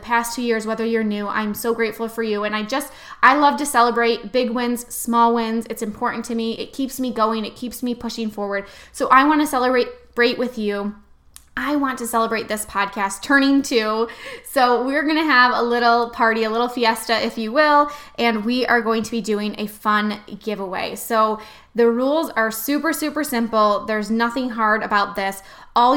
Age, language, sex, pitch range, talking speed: 10-29, English, female, 215-250 Hz, 200 wpm